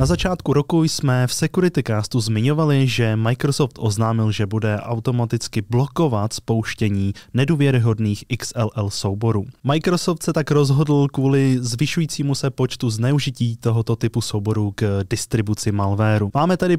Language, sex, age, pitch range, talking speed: Czech, male, 20-39, 110-145 Hz, 130 wpm